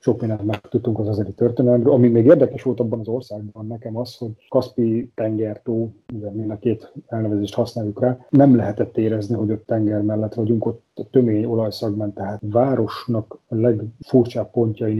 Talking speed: 165 wpm